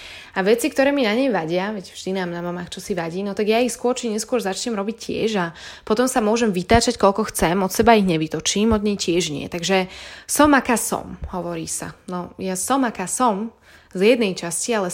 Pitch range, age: 185-240 Hz, 20-39